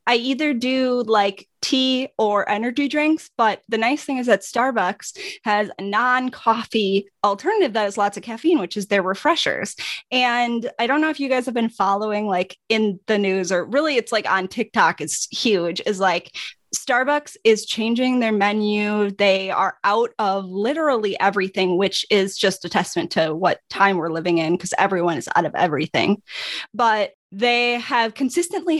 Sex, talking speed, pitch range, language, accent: female, 175 wpm, 195-250 Hz, English, American